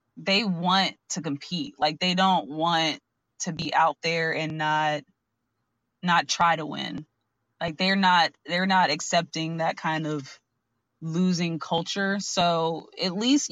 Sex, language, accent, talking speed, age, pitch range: female, English, American, 140 wpm, 20-39, 155-185 Hz